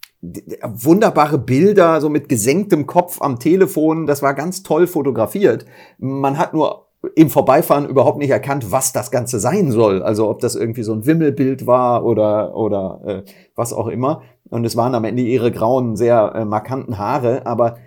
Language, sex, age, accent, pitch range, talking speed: German, male, 40-59, German, 115-155 Hz, 175 wpm